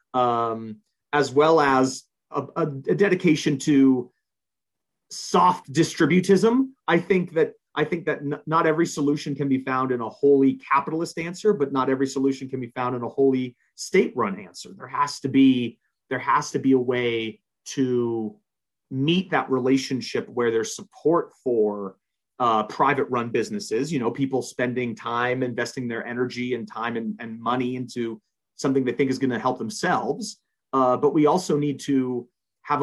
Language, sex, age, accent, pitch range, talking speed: English, male, 30-49, American, 125-160 Hz, 170 wpm